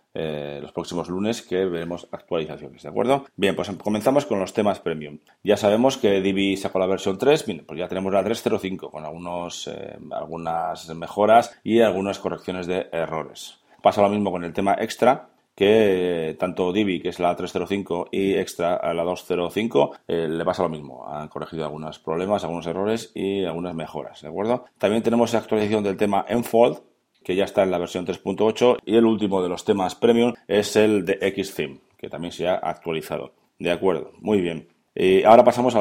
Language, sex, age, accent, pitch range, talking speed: Spanish, male, 30-49, Spanish, 90-105 Hz, 190 wpm